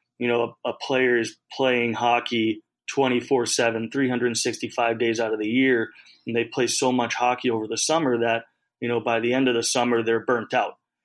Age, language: 30-49, English